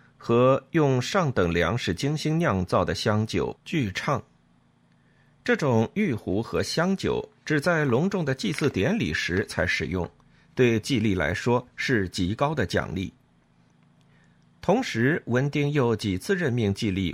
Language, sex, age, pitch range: Chinese, male, 50-69, 100-145 Hz